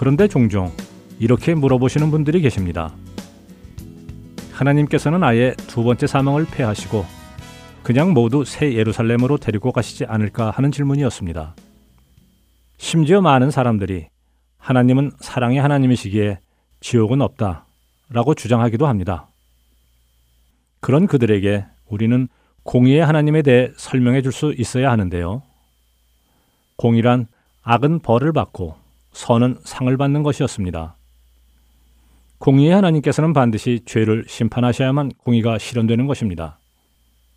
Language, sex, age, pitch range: Korean, male, 40-59, 80-135 Hz